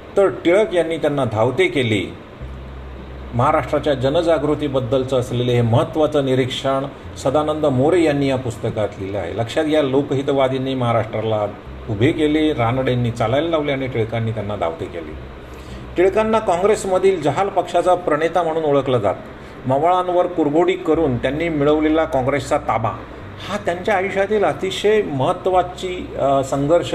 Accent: native